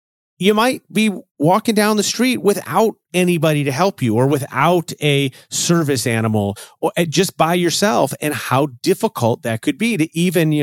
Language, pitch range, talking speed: English, 120-170 Hz, 170 wpm